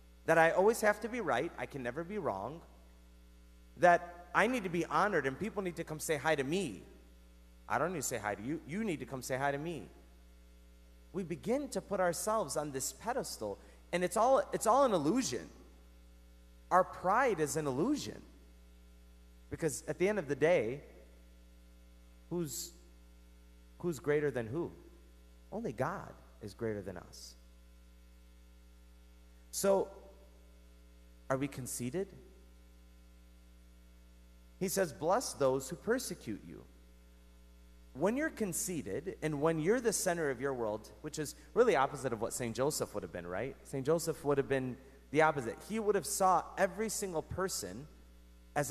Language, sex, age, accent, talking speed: English, male, 30-49, American, 160 wpm